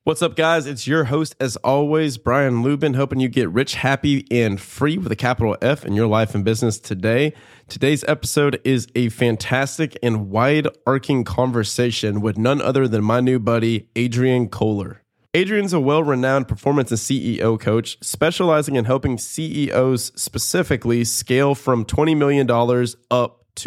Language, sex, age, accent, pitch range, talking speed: English, male, 20-39, American, 115-140 Hz, 160 wpm